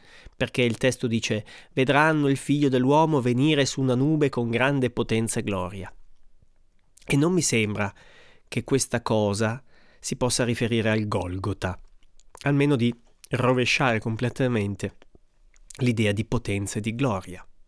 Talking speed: 130 wpm